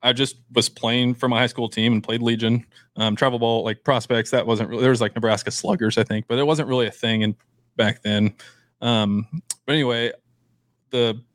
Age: 20-39